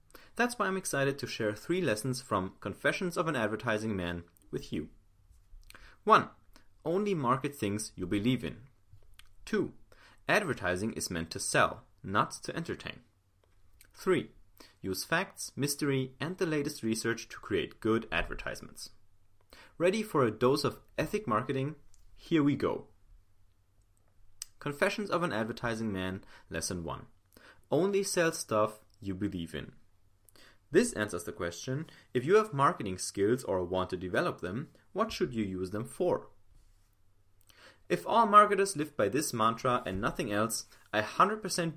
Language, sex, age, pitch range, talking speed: English, male, 30-49, 100-145 Hz, 140 wpm